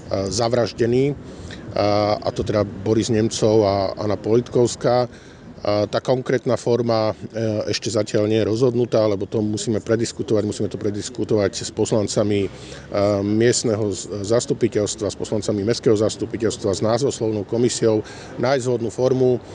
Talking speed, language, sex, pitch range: 115 wpm, Slovak, male, 105-115 Hz